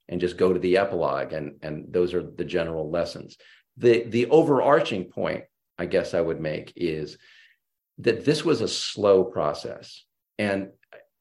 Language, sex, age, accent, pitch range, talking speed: English, male, 40-59, American, 90-125 Hz, 160 wpm